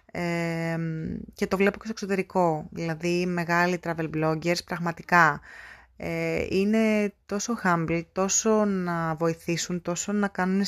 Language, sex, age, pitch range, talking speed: Greek, female, 20-39, 160-195 Hz, 125 wpm